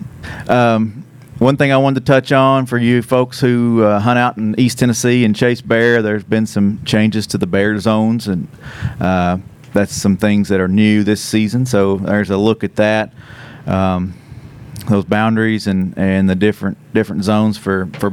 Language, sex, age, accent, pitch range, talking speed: English, male, 30-49, American, 100-120 Hz, 185 wpm